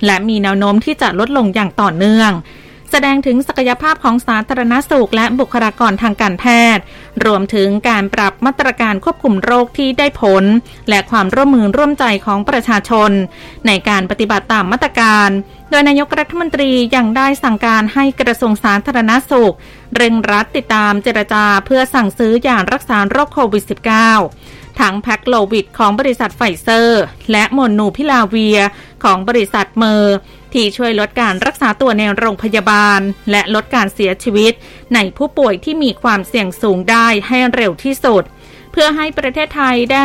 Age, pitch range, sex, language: 20-39, 210-265 Hz, female, Thai